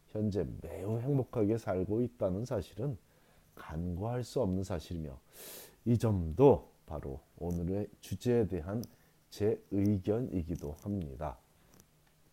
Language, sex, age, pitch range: Korean, male, 40-59, 85-120 Hz